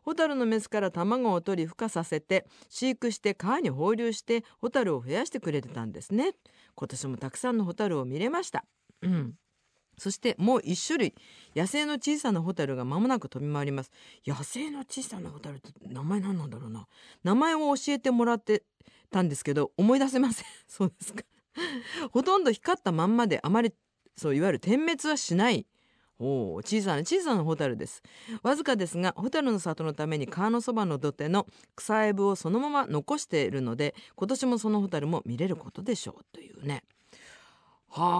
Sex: female